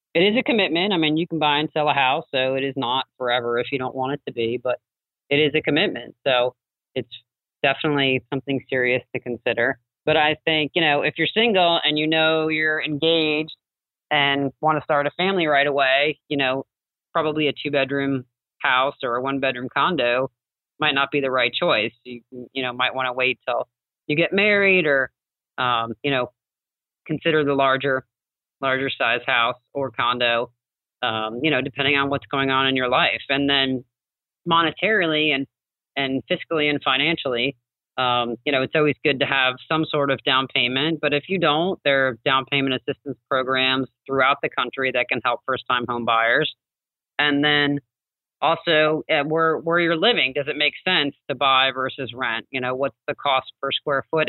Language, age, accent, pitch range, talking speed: English, 30-49, American, 125-150 Hz, 195 wpm